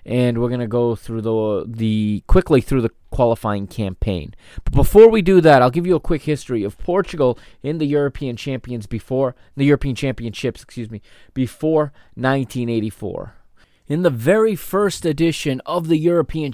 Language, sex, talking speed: English, male, 165 wpm